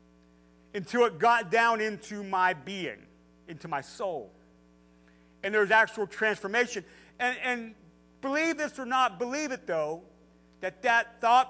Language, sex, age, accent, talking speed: English, male, 50-69, American, 135 wpm